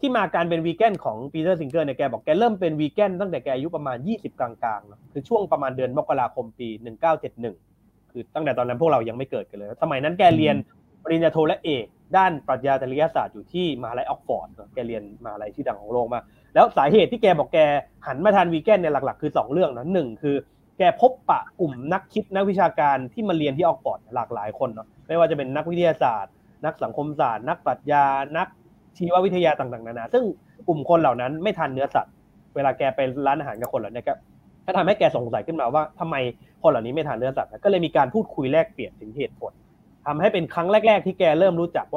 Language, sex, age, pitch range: Thai, male, 30-49, 135-185 Hz